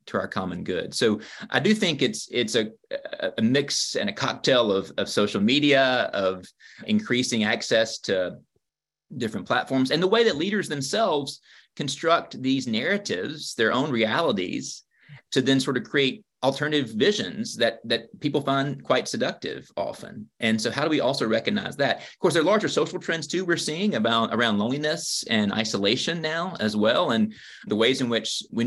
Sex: male